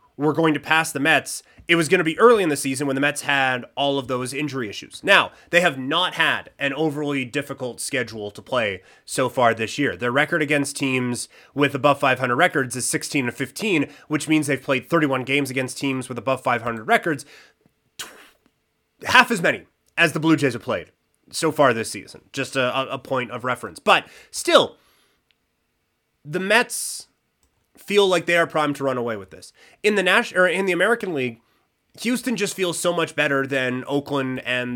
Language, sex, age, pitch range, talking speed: English, male, 30-49, 130-165 Hz, 195 wpm